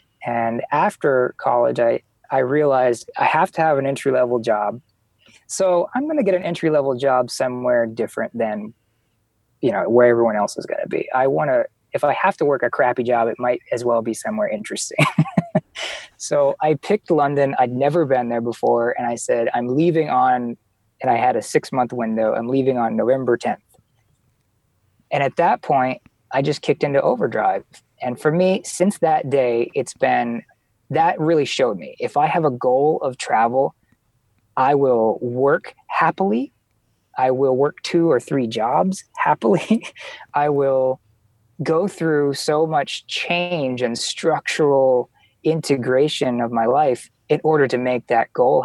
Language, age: English, 20-39